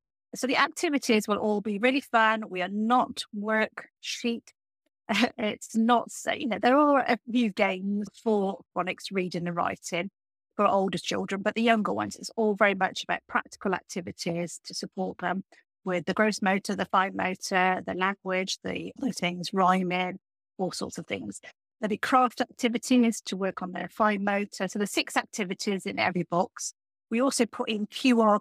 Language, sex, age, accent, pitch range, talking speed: English, female, 40-59, British, 180-220 Hz, 175 wpm